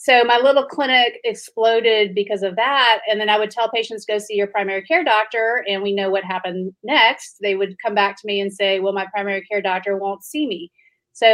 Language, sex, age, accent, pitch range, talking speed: English, female, 30-49, American, 195-230 Hz, 230 wpm